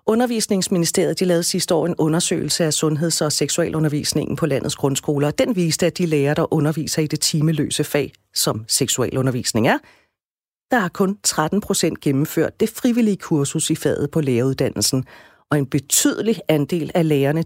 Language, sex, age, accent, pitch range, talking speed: Danish, female, 40-59, native, 150-195 Hz, 160 wpm